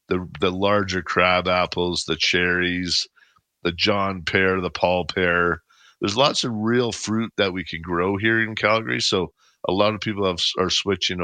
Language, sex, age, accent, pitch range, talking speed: English, male, 50-69, American, 90-110 Hz, 175 wpm